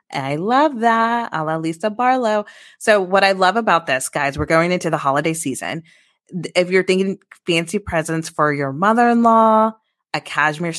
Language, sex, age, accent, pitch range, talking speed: English, female, 20-39, American, 145-180 Hz, 180 wpm